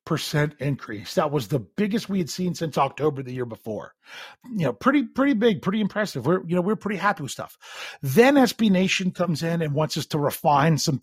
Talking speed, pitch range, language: 220 wpm, 135-180 Hz, English